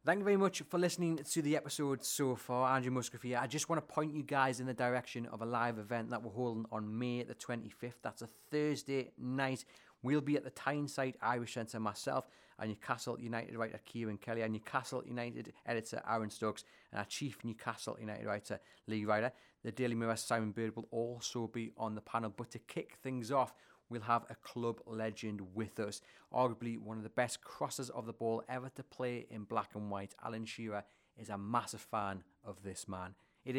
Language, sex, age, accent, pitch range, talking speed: English, male, 30-49, British, 110-130 Hz, 205 wpm